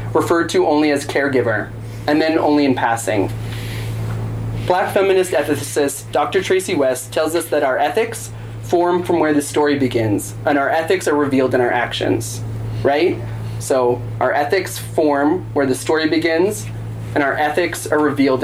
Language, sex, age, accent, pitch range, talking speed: English, male, 20-39, American, 115-155 Hz, 160 wpm